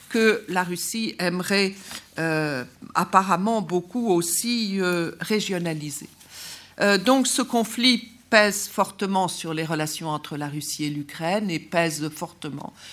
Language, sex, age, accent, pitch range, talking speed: French, female, 50-69, French, 160-205 Hz, 125 wpm